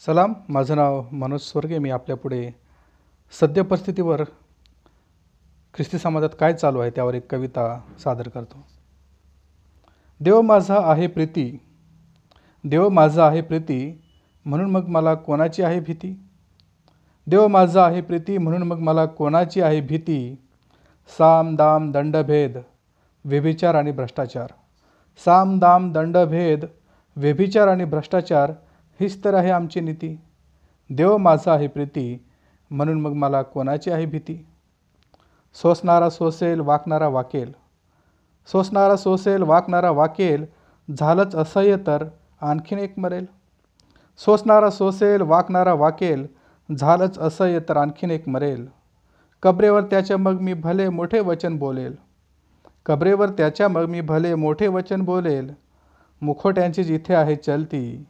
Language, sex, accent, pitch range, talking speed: Hindi, male, native, 135-180 Hz, 105 wpm